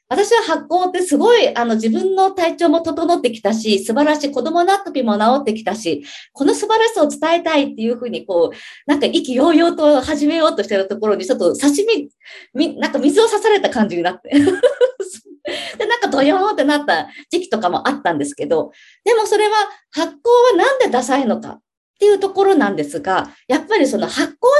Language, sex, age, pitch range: Japanese, female, 40-59, 235-390 Hz